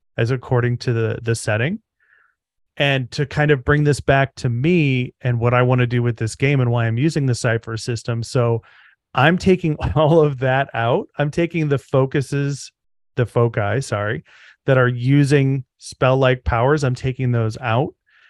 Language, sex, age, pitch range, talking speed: English, male, 30-49, 120-140 Hz, 175 wpm